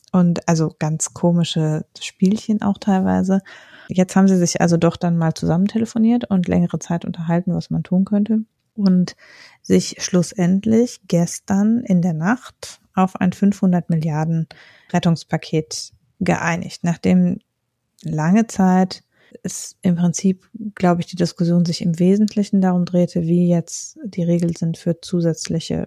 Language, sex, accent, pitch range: German, female, German, 165-190 Hz